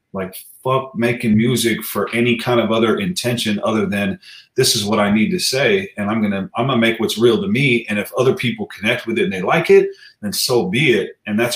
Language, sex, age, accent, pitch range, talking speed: English, male, 30-49, American, 115-175 Hz, 240 wpm